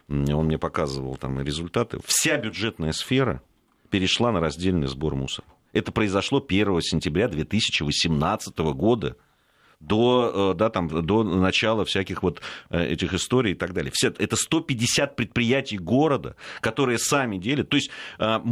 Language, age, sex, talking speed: Russian, 40-59, male, 125 wpm